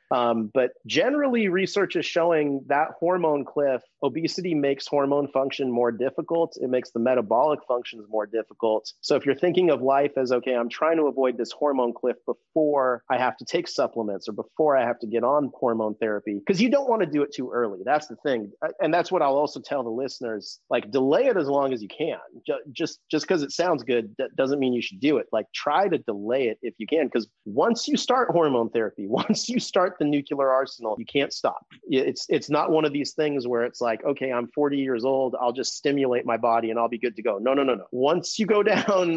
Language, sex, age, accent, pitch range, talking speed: English, male, 30-49, American, 125-165 Hz, 230 wpm